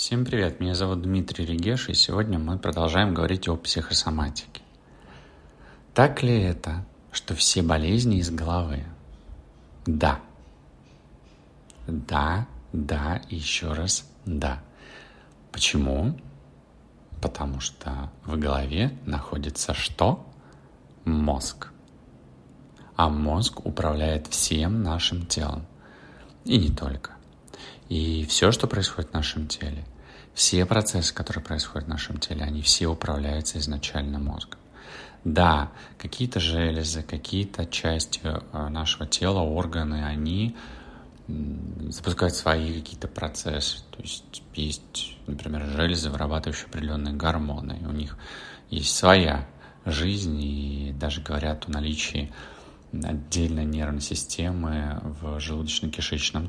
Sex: male